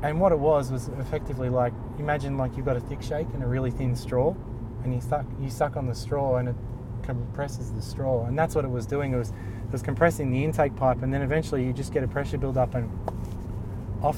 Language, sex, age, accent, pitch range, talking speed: English, male, 20-39, Australian, 115-135 Hz, 245 wpm